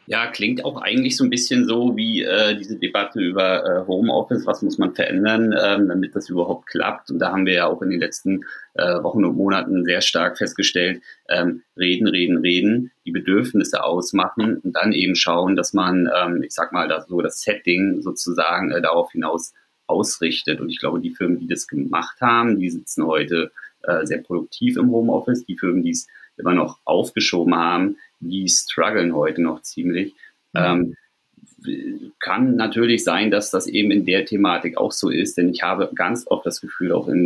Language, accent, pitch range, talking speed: German, German, 90-125 Hz, 190 wpm